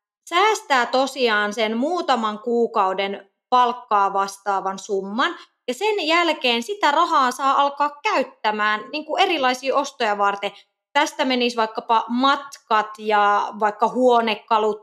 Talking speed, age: 115 wpm, 20-39